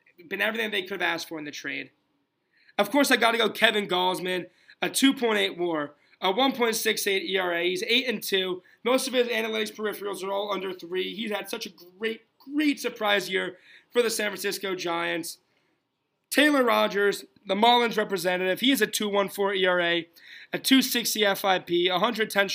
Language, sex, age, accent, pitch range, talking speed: English, male, 20-39, American, 185-260 Hz, 180 wpm